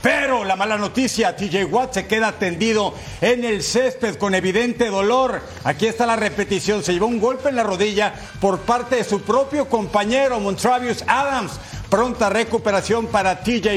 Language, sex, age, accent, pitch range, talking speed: Spanish, male, 50-69, Mexican, 195-275 Hz, 165 wpm